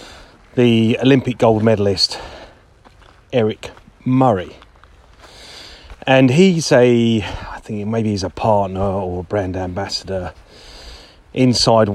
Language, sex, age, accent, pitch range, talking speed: English, male, 30-49, British, 90-120 Hz, 100 wpm